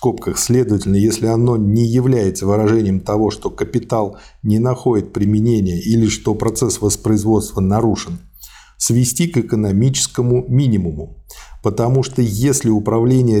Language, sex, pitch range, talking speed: Russian, male, 100-125 Hz, 110 wpm